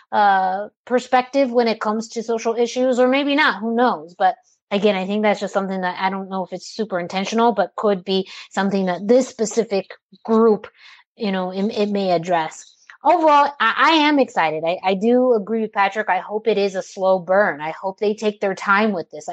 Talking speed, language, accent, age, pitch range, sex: 210 wpm, English, American, 30-49, 195-230 Hz, female